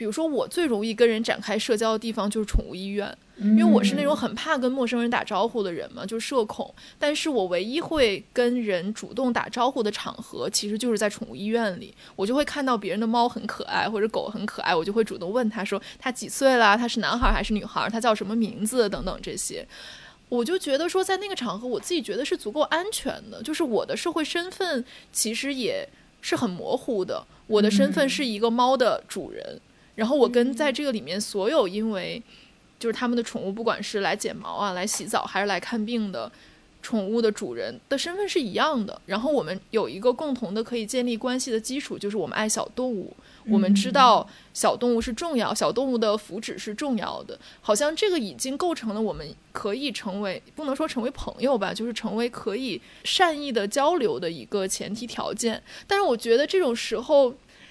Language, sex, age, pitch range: English, female, 20-39, 215-275 Hz